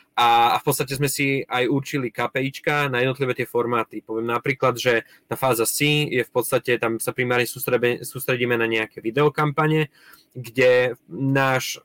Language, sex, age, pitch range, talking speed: Czech, male, 20-39, 120-140 Hz, 155 wpm